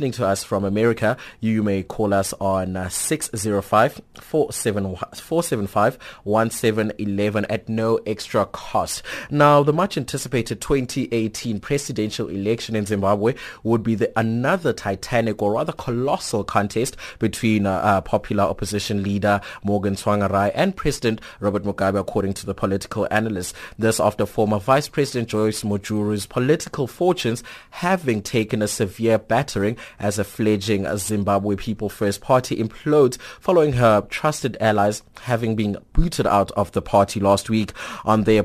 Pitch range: 100-115 Hz